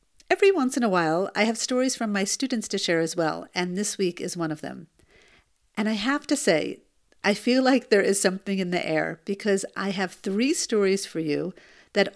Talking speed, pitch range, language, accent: 215 wpm, 180-220 Hz, English, American